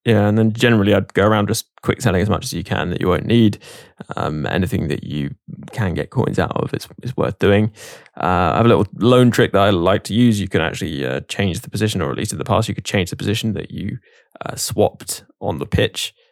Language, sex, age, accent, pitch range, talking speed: English, male, 10-29, British, 95-115 Hz, 250 wpm